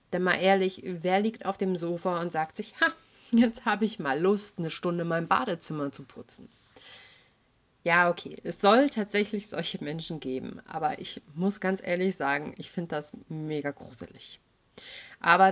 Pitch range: 155-195 Hz